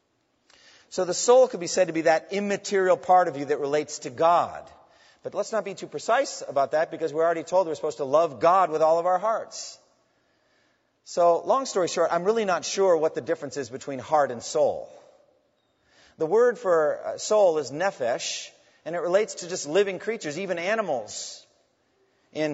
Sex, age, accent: male, 40-59, American